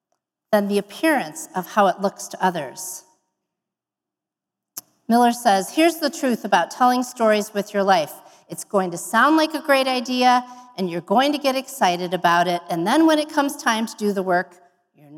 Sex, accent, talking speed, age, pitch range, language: female, American, 185 wpm, 40-59, 195-265 Hz, English